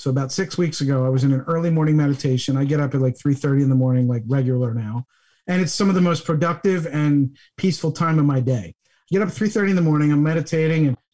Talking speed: 260 wpm